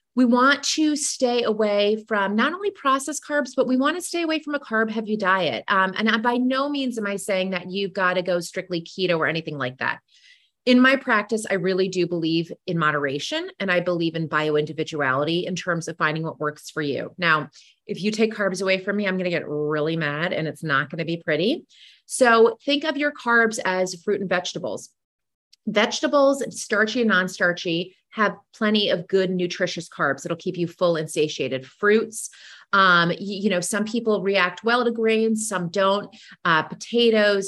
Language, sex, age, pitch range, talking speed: English, female, 30-49, 175-245 Hz, 200 wpm